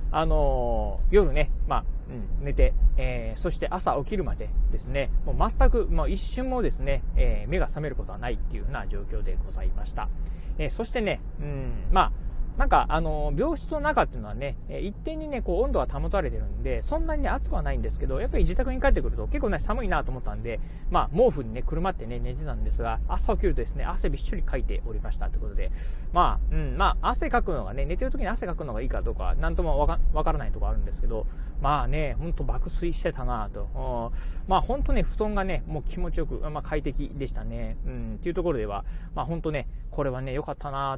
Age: 40-59